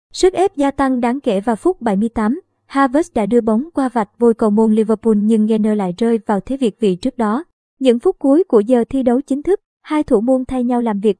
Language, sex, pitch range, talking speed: Vietnamese, male, 215-265 Hz, 240 wpm